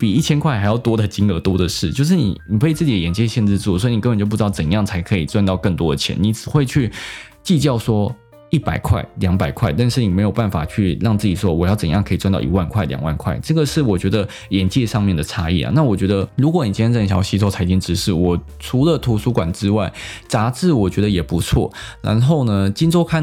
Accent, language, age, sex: native, Chinese, 20-39, male